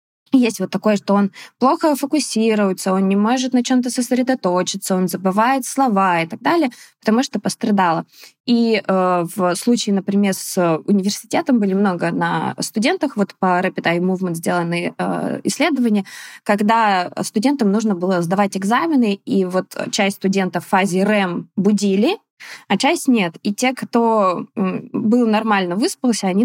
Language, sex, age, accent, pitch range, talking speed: Russian, female, 20-39, native, 185-225 Hz, 145 wpm